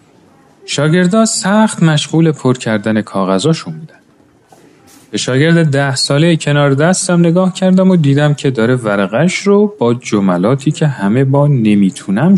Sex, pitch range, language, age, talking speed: male, 125-175 Hz, Persian, 40-59, 125 wpm